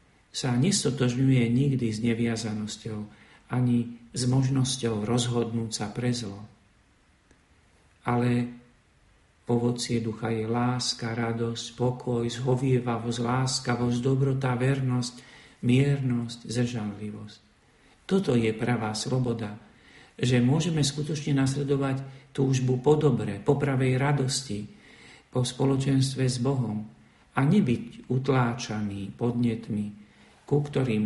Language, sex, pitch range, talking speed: Slovak, male, 110-135 Hz, 95 wpm